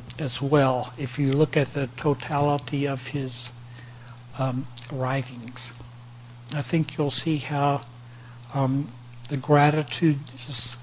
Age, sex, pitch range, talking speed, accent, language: 60-79, male, 120-150 Hz, 115 wpm, American, English